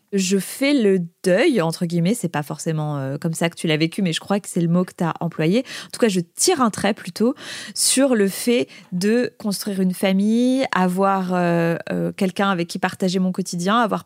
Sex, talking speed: female, 215 wpm